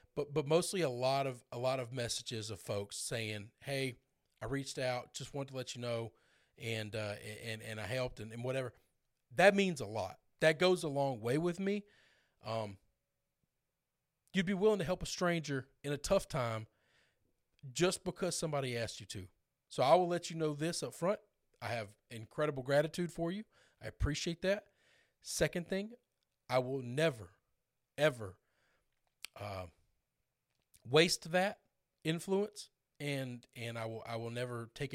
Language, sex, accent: English, male, American